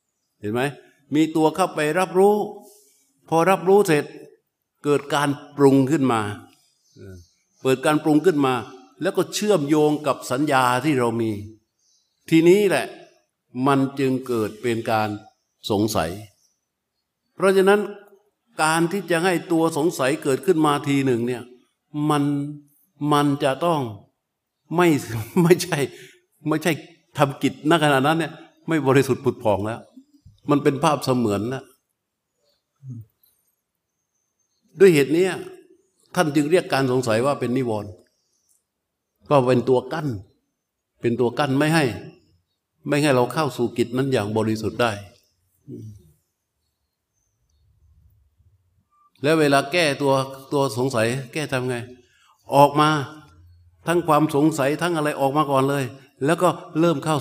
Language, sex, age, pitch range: Thai, male, 60-79, 120-160 Hz